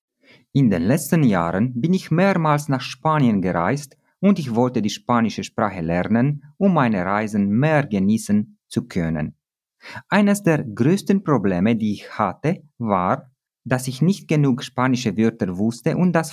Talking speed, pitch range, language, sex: 150 wpm, 105-150 Hz, Romanian, male